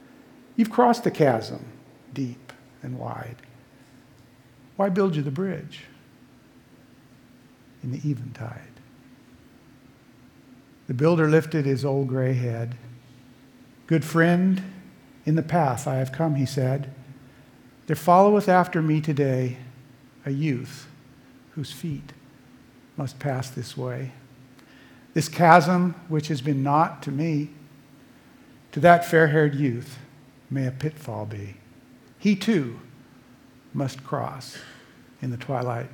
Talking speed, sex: 115 wpm, male